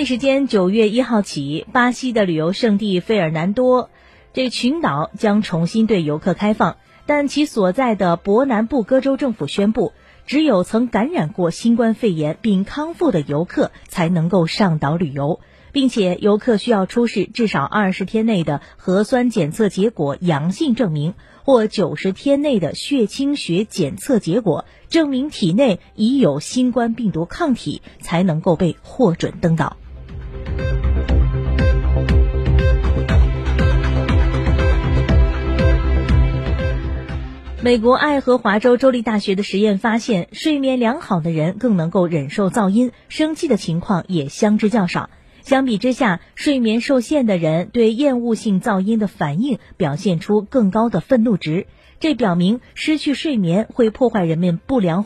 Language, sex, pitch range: Chinese, female, 160-245 Hz